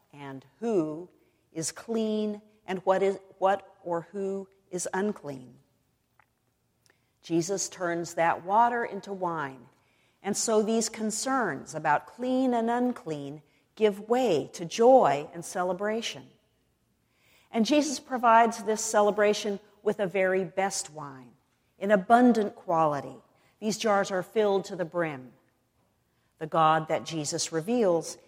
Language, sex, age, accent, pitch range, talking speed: English, female, 50-69, American, 160-210 Hz, 120 wpm